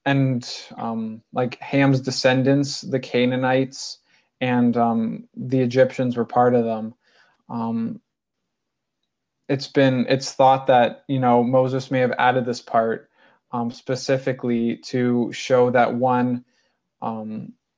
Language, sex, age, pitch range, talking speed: English, male, 20-39, 115-130 Hz, 120 wpm